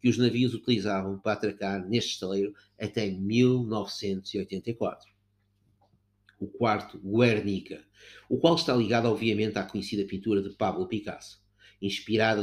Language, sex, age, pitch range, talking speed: Portuguese, male, 50-69, 100-120 Hz, 120 wpm